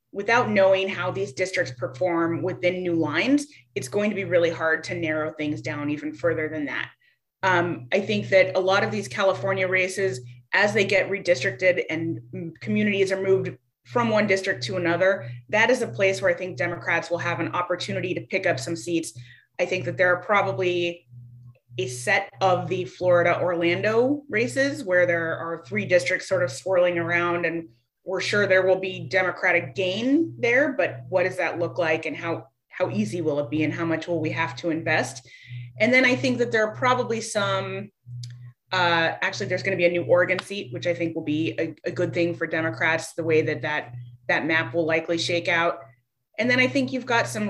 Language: English